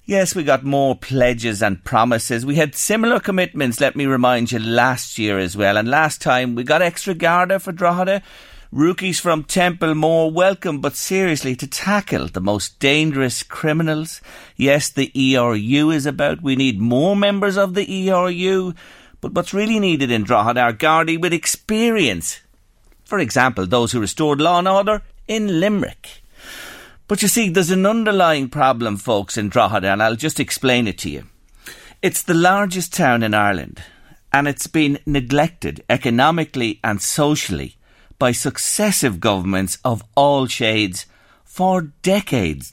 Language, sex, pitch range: English, male, 110-170 Hz